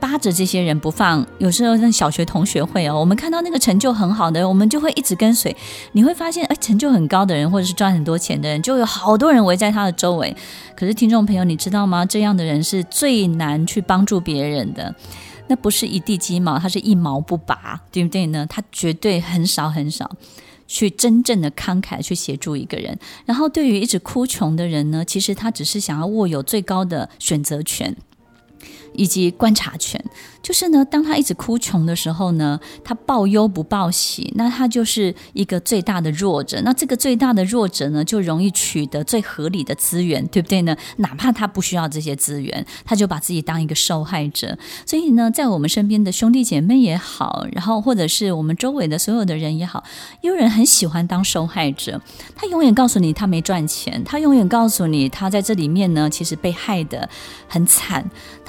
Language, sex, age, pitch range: Chinese, female, 20-39, 165-225 Hz